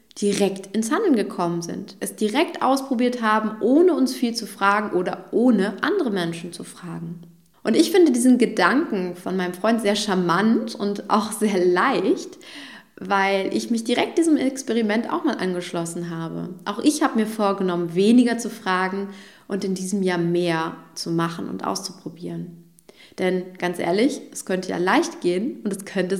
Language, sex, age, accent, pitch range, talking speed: German, female, 20-39, German, 185-250 Hz, 165 wpm